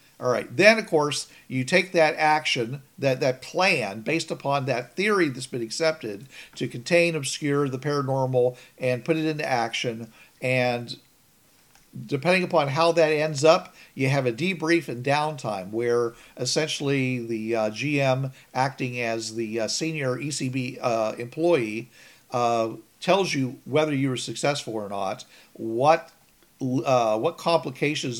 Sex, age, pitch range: male, 50-69, 125-160 Hz